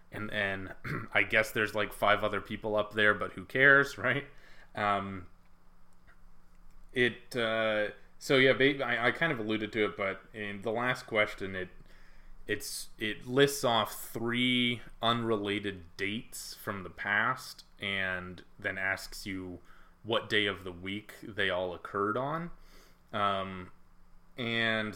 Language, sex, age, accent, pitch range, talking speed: English, male, 20-39, American, 95-115 Hz, 140 wpm